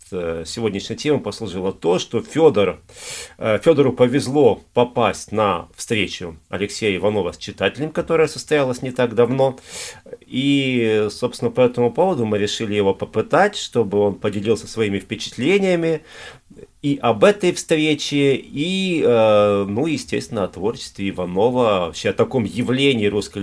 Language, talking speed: Russian, 125 wpm